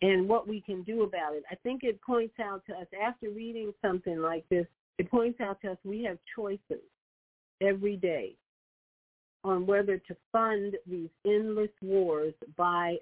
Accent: American